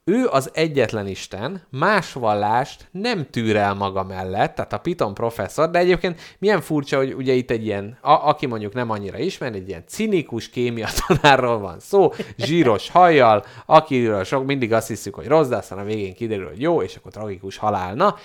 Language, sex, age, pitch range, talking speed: Hungarian, male, 30-49, 100-135 Hz, 180 wpm